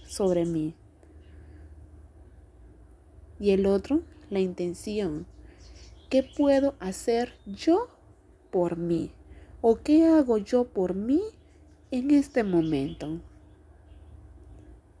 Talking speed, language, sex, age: 90 wpm, Spanish, female, 30-49